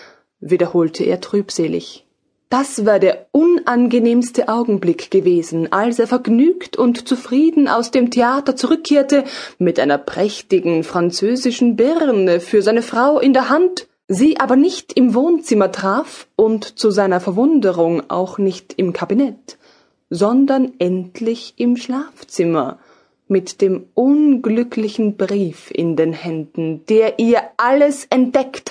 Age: 20-39